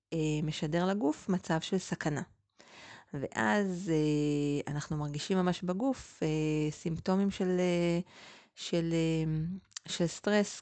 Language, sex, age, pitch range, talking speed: Hebrew, female, 30-49, 145-175 Hz, 100 wpm